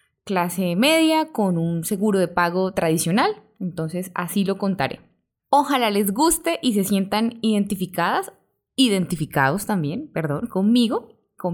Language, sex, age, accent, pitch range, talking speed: Spanish, female, 10-29, Colombian, 175-235 Hz, 125 wpm